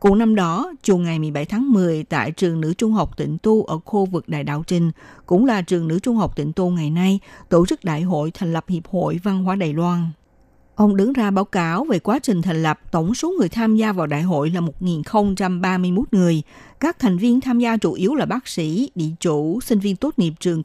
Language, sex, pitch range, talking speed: Vietnamese, female, 165-215 Hz, 235 wpm